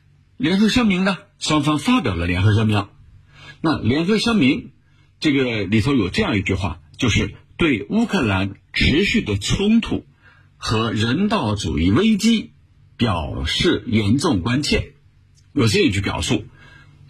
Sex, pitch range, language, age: male, 100-150 Hz, Chinese, 60-79